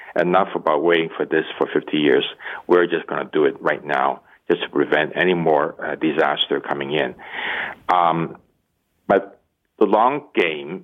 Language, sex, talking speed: English, male, 165 wpm